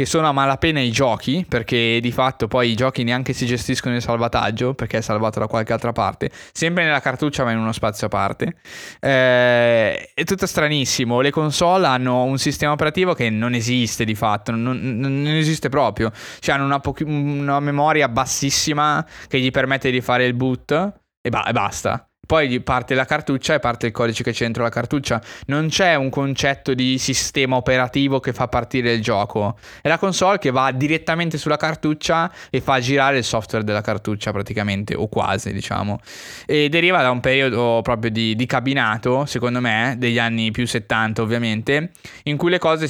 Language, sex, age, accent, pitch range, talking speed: Italian, male, 10-29, native, 115-140 Hz, 185 wpm